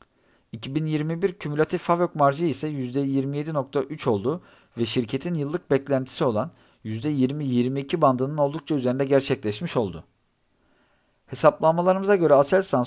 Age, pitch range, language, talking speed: 50-69, 130-160 Hz, Turkish, 100 wpm